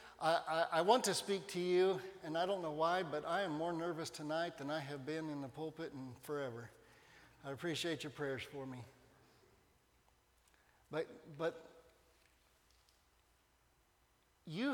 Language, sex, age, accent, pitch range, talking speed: English, male, 50-69, American, 150-190 Hz, 145 wpm